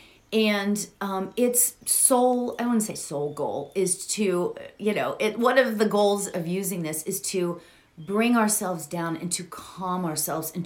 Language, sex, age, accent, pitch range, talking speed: English, female, 30-49, American, 155-200 Hz, 175 wpm